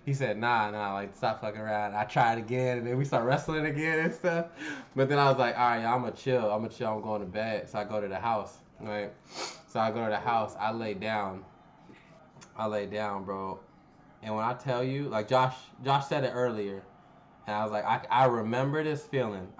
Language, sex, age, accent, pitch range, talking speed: English, male, 20-39, American, 105-130 Hz, 230 wpm